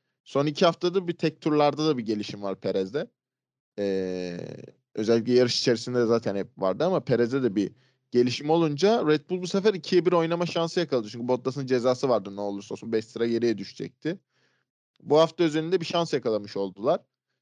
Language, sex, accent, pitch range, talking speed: Turkish, male, native, 110-155 Hz, 175 wpm